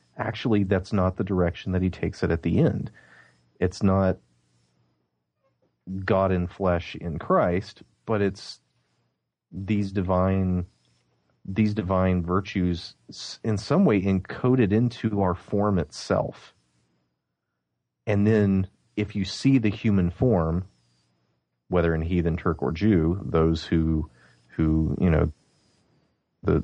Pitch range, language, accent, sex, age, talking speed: 65-95 Hz, English, American, male, 30-49, 120 wpm